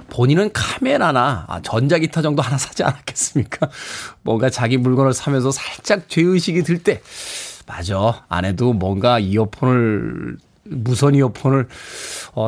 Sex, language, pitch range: male, Korean, 130-195 Hz